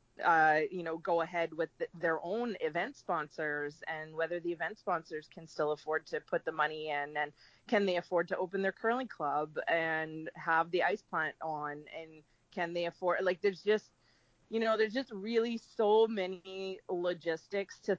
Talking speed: 180 wpm